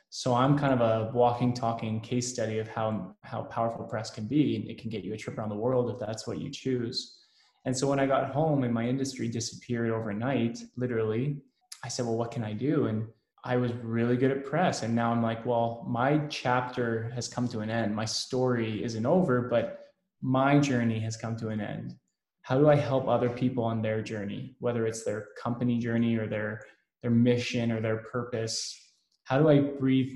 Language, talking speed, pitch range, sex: English, 210 wpm, 115-125 Hz, male